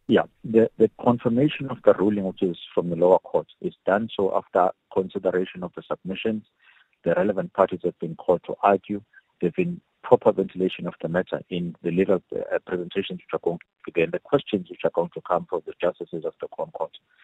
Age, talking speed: 50-69, 205 wpm